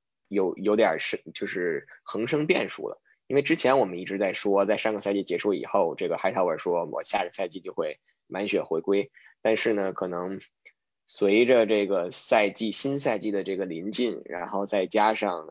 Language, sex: Chinese, male